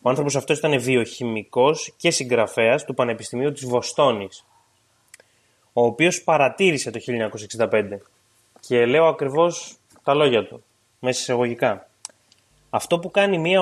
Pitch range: 125-165 Hz